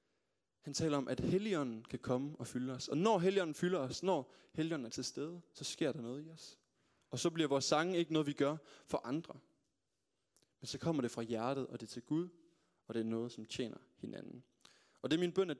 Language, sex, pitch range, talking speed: Danish, male, 120-145 Hz, 235 wpm